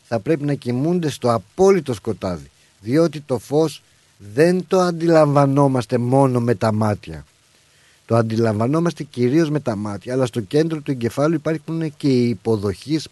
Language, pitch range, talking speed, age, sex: Greek, 110-155 Hz, 145 wpm, 50-69, male